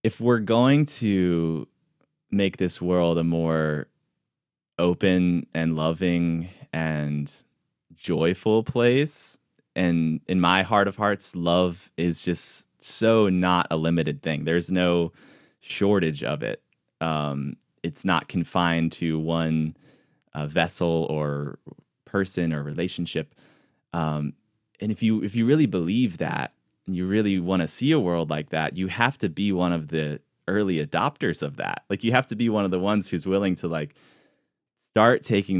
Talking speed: 150 wpm